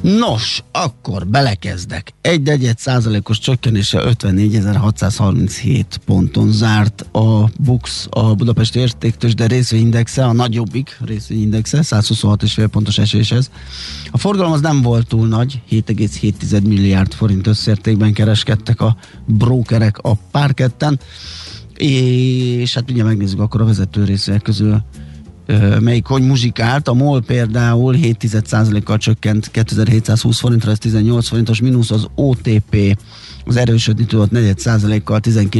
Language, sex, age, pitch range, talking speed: Hungarian, male, 30-49, 105-125 Hz, 120 wpm